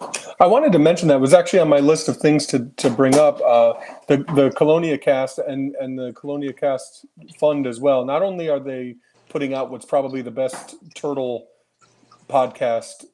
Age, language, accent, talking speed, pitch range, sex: 30-49, English, American, 190 wpm, 115-140 Hz, male